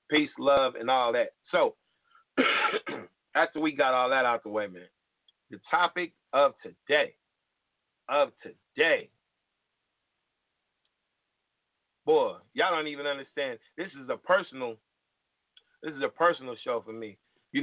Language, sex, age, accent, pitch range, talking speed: English, male, 40-59, American, 115-150 Hz, 130 wpm